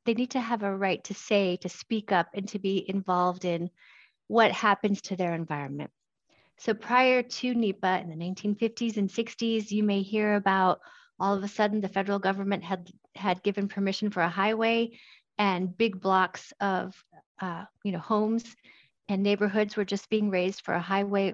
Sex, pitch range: female, 185-215 Hz